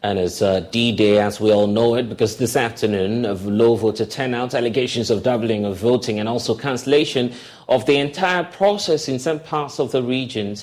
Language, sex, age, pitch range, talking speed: English, male, 30-49, 105-130 Hz, 200 wpm